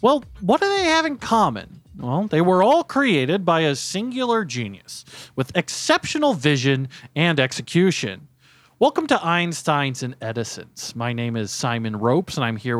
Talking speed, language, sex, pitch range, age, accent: 160 wpm, English, male, 130-170 Hz, 40-59, American